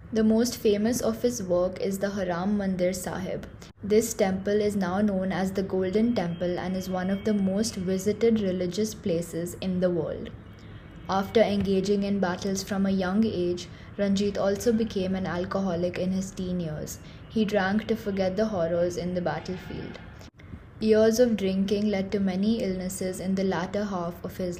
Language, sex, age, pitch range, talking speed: English, female, 20-39, 180-210 Hz, 175 wpm